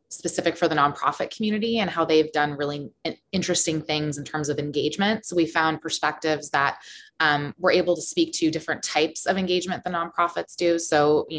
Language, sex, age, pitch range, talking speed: English, female, 20-39, 150-185 Hz, 190 wpm